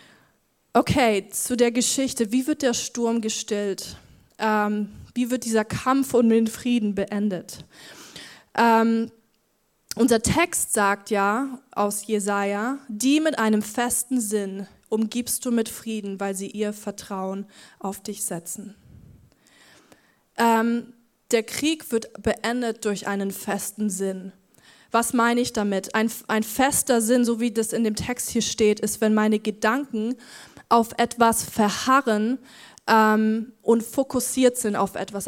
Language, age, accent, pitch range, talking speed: German, 20-39, German, 210-245 Hz, 135 wpm